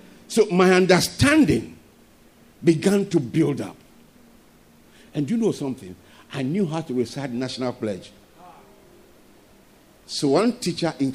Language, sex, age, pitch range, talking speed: English, male, 50-69, 130-195 Hz, 125 wpm